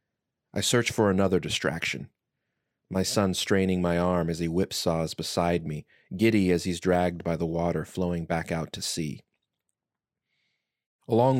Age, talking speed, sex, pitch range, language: 30-49, 145 wpm, male, 85-105 Hz, English